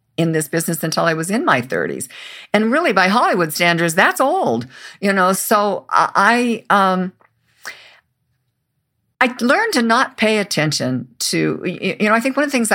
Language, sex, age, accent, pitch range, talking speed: English, female, 50-69, American, 140-190 Hz, 170 wpm